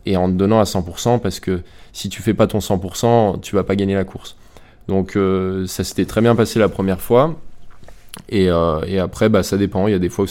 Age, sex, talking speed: 20-39, male, 260 wpm